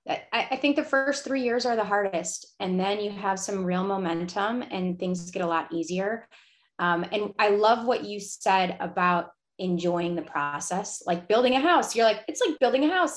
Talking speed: 200 wpm